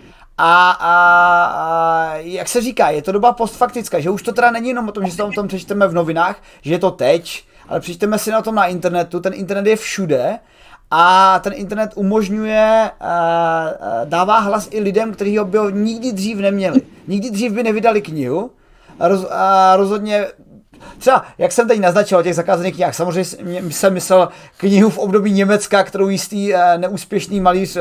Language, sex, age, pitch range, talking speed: Czech, male, 30-49, 175-210 Hz, 180 wpm